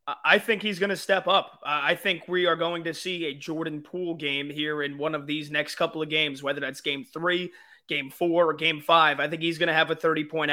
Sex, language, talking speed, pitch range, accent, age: male, English, 255 wpm, 150-180 Hz, American, 20-39